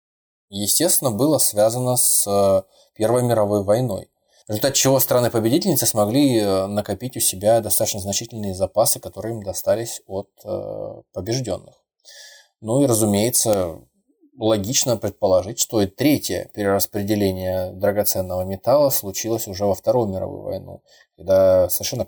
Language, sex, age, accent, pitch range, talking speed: Russian, male, 20-39, native, 95-120 Hz, 115 wpm